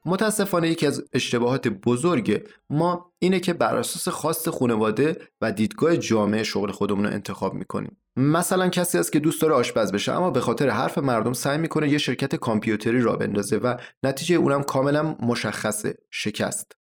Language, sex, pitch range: Persian, male, 110-155 Hz